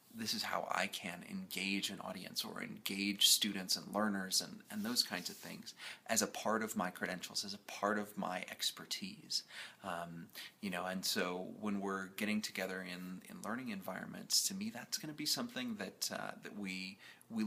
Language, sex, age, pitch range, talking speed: English, male, 30-49, 95-110 Hz, 190 wpm